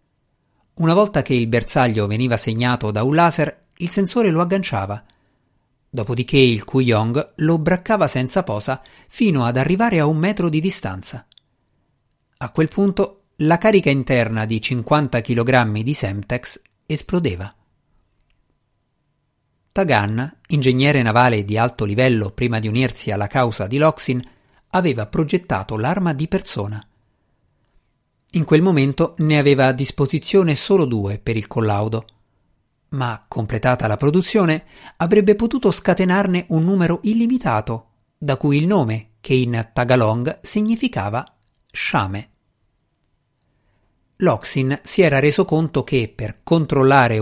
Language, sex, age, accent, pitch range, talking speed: Italian, male, 50-69, native, 115-160 Hz, 125 wpm